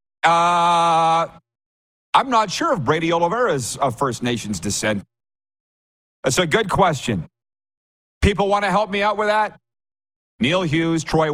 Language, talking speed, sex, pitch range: English, 140 wpm, male, 115-155 Hz